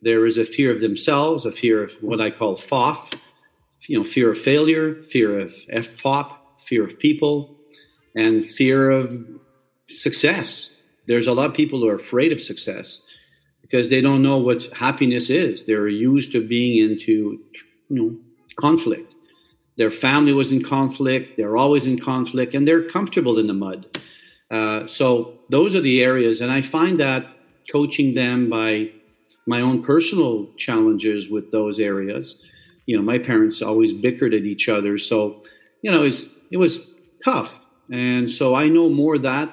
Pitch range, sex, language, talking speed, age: 110-145 Hz, male, English, 165 wpm, 50-69